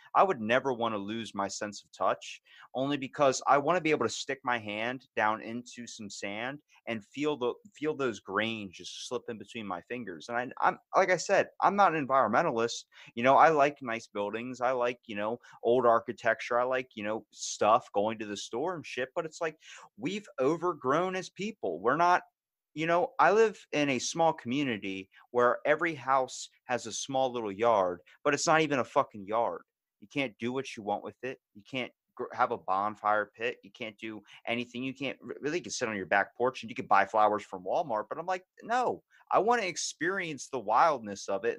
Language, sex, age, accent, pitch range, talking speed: English, male, 30-49, American, 115-160 Hz, 210 wpm